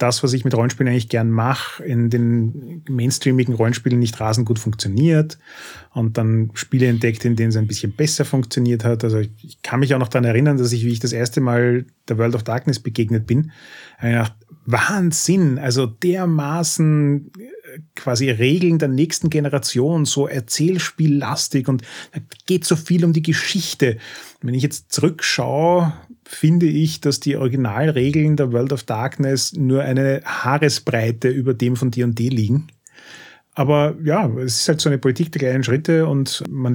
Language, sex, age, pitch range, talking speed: German, male, 30-49, 120-150 Hz, 170 wpm